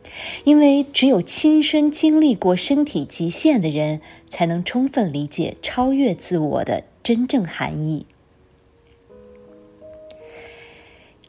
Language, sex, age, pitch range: Chinese, female, 20-39, 165-230 Hz